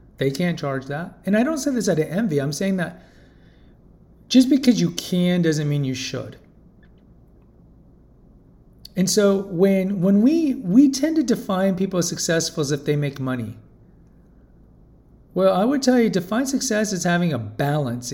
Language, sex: English, male